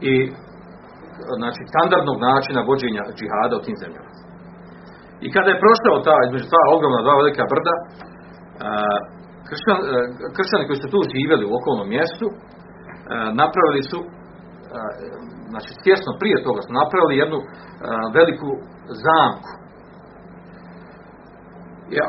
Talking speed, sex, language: 115 wpm, male, Croatian